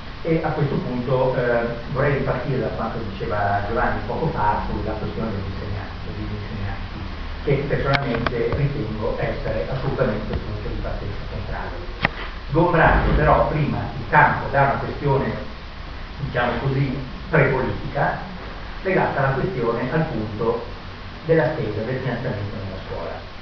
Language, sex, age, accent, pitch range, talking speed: Italian, male, 40-59, native, 105-140 Hz, 130 wpm